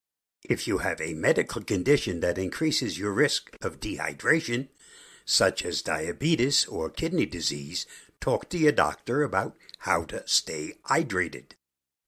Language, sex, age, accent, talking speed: English, male, 60-79, American, 135 wpm